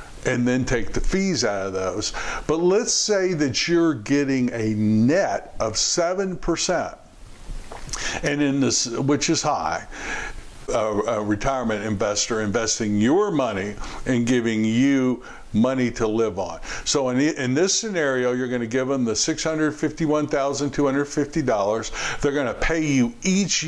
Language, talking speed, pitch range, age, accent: English, 140 wpm, 115-150 Hz, 60-79, American